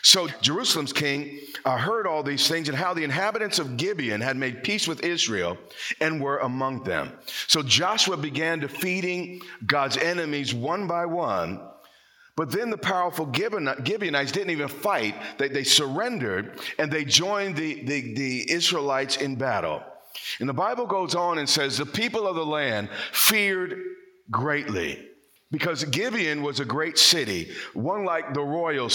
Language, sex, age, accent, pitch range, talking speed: English, male, 50-69, American, 140-175 Hz, 155 wpm